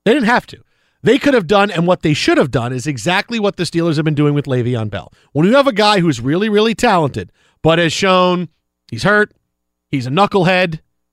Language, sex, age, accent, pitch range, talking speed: English, male, 40-59, American, 150-200 Hz, 225 wpm